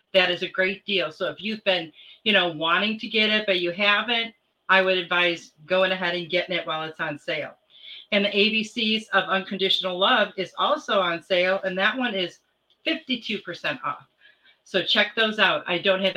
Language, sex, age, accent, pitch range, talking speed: English, female, 40-59, American, 190-230 Hz, 195 wpm